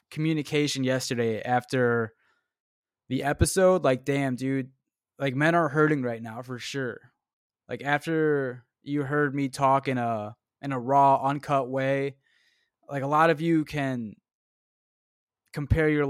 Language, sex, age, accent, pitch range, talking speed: English, male, 20-39, American, 125-160 Hz, 140 wpm